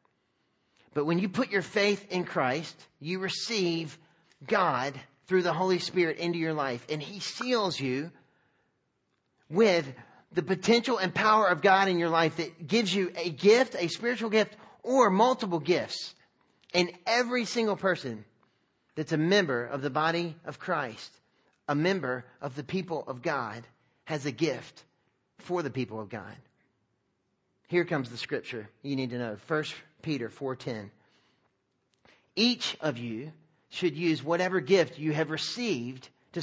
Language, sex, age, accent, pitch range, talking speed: English, male, 40-59, American, 145-190 Hz, 155 wpm